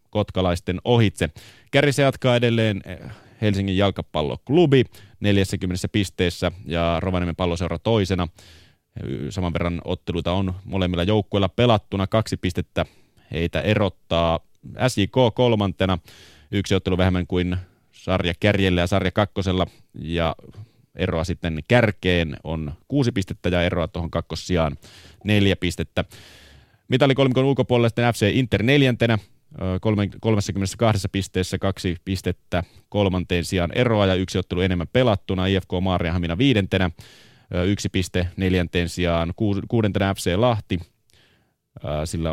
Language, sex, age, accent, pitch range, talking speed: Finnish, male, 30-49, native, 90-110 Hz, 105 wpm